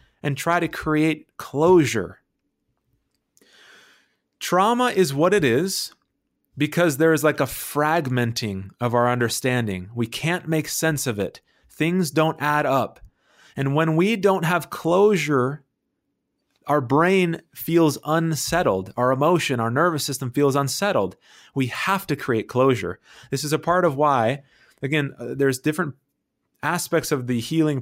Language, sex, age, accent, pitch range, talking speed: English, male, 30-49, American, 130-165 Hz, 140 wpm